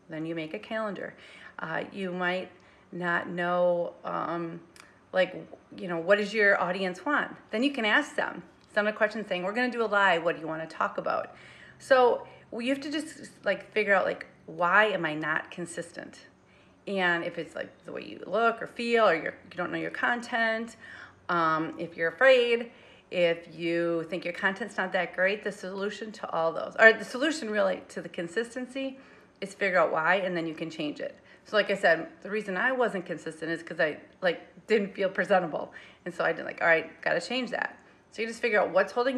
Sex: female